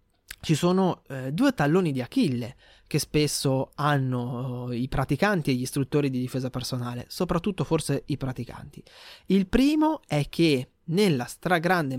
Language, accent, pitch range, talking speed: Italian, native, 130-175 Hz, 145 wpm